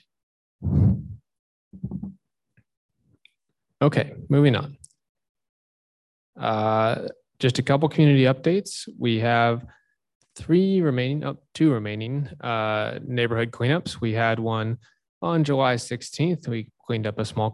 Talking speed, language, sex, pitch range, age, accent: 105 wpm, English, male, 110-140 Hz, 20-39, American